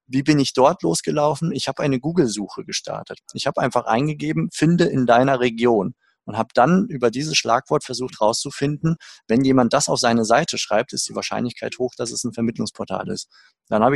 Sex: male